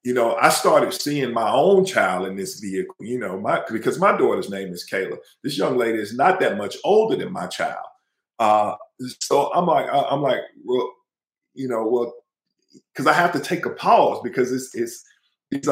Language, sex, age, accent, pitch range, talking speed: English, male, 40-59, American, 105-175 Hz, 200 wpm